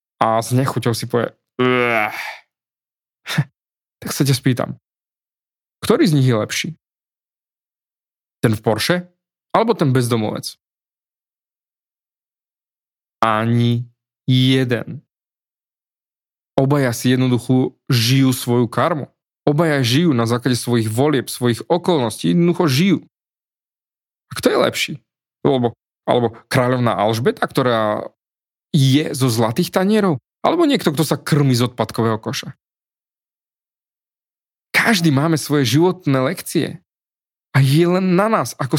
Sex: male